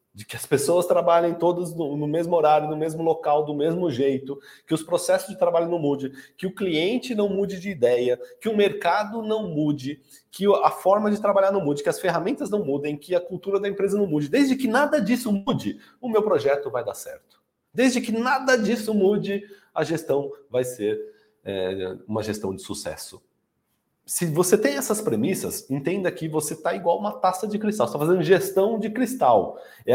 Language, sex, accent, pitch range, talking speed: Portuguese, male, Brazilian, 140-210 Hz, 195 wpm